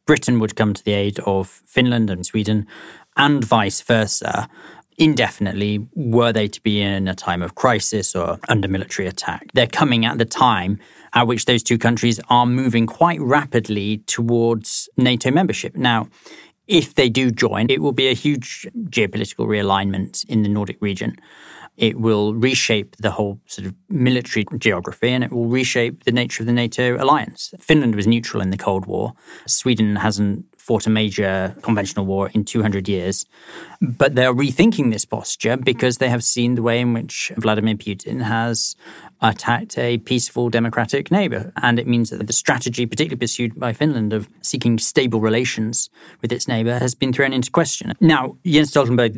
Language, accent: English, British